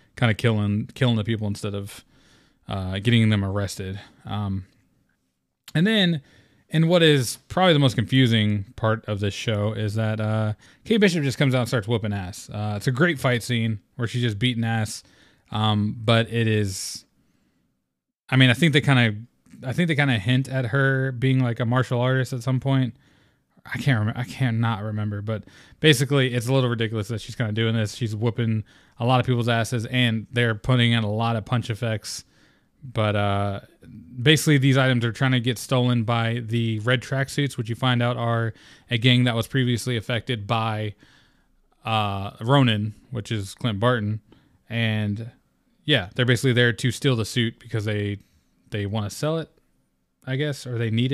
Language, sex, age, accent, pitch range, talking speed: English, male, 20-39, American, 110-130 Hz, 190 wpm